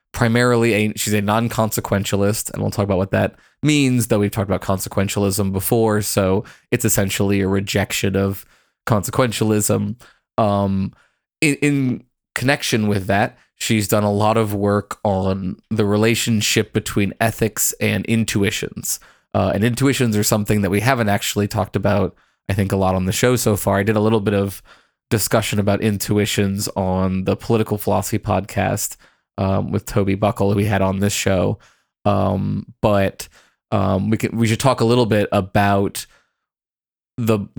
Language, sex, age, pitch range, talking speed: English, male, 20-39, 100-110 Hz, 160 wpm